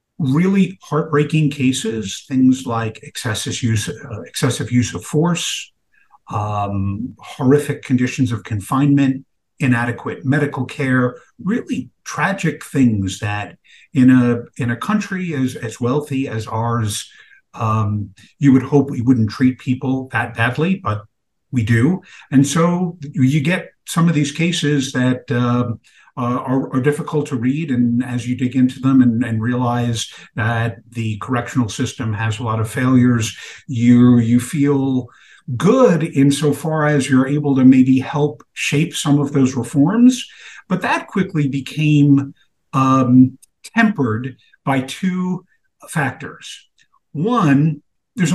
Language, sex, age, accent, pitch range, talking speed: English, male, 50-69, American, 120-150 Hz, 135 wpm